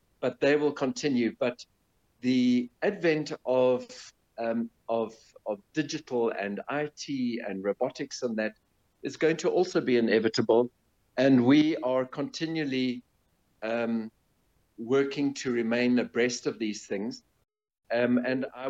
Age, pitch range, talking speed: 50-69, 110-135 Hz, 130 wpm